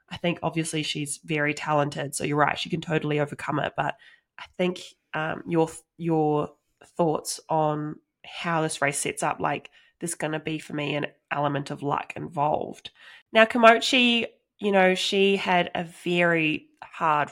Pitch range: 150-180 Hz